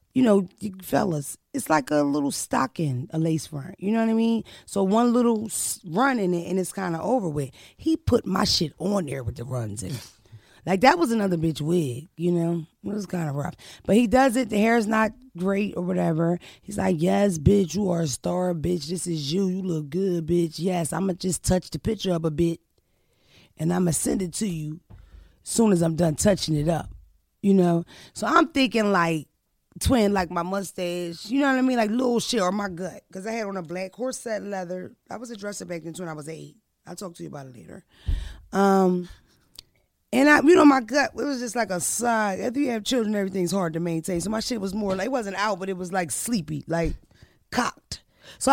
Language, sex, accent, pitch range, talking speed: English, female, American, 165-220 Hz, 235 wpm